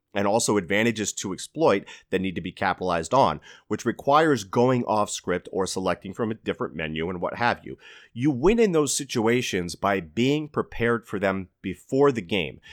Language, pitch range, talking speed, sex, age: English, 95-120 Hz, 185 wpm, male, 30-49